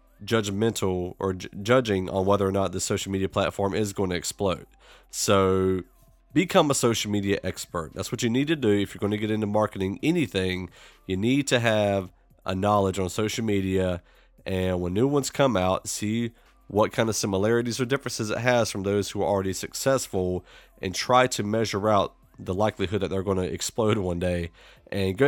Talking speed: 190 wpm